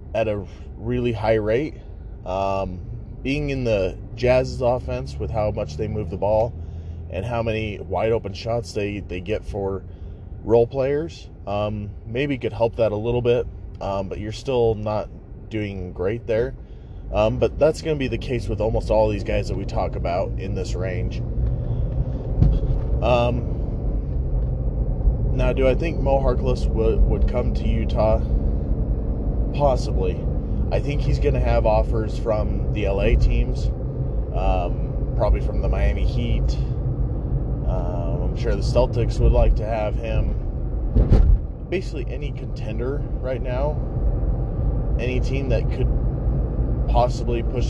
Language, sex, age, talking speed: English, male, 20-39, 145 wpm